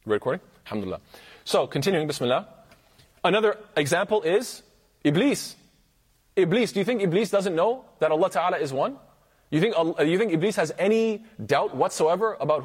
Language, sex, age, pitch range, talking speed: English, male, 30-49, 155-215 Hz, 150 wpm